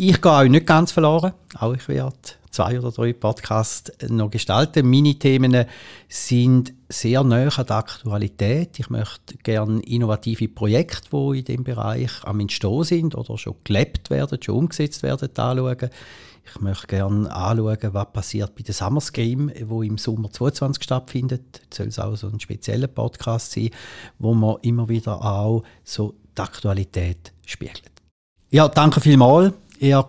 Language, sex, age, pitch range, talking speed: German, male, 40-59, 110-140 Hz, 155 wpm